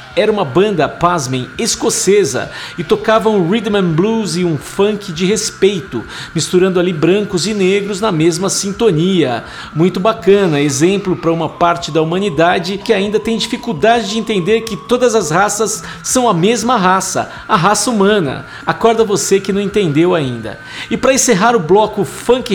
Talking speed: 160 wpm